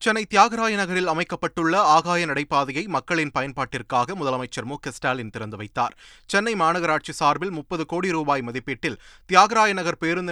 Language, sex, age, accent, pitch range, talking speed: Tamil, male, 30-49, native, 140-185 Hz, 140 wpm